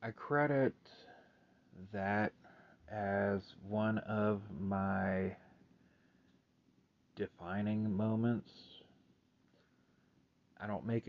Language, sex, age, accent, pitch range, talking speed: English, male, 30-49, American, 90-115 Hz, 65 wpm